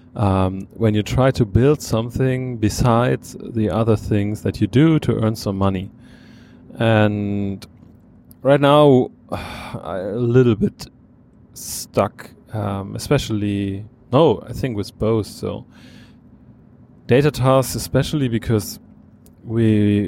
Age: 30-49